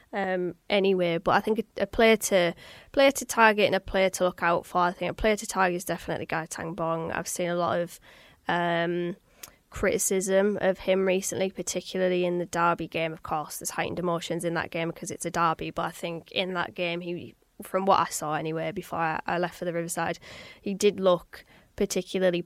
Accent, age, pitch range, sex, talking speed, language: British, 20-39, 170-195 Hz, female, 210 wpm, English